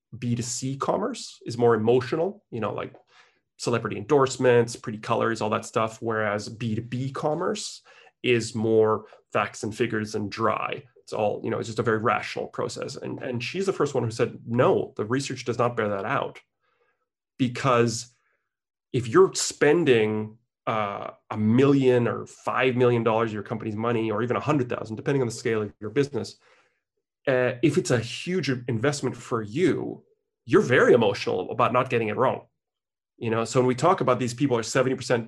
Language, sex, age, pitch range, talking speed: English, male, 30-49, 115-135 Hz, 175 wpm